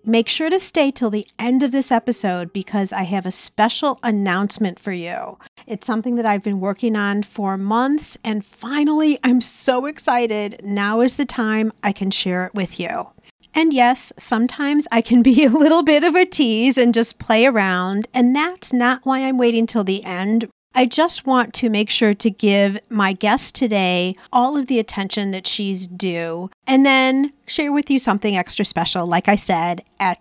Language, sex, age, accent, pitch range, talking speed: English, female, 40-59, American, 200-260 Hz, 195 wpm